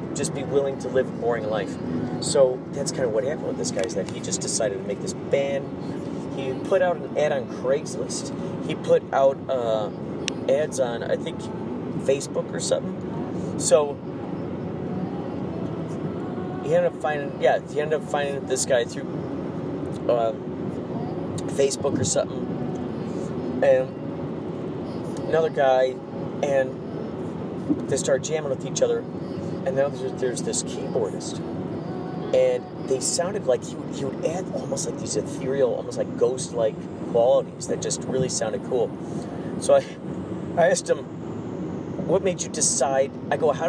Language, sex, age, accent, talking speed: English, male, 40-59, American, 155 wpm